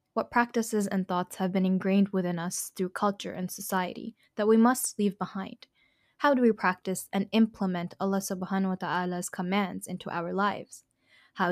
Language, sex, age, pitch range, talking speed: English, female, 10-29, 185-220 Hz, 155 wpm